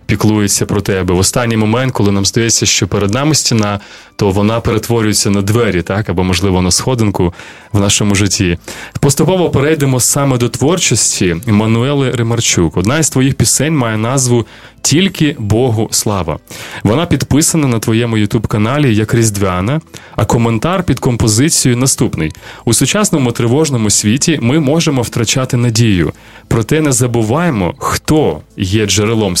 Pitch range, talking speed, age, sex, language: 105-140 Hz, 140 wpm, 20-39, male, Ukrainian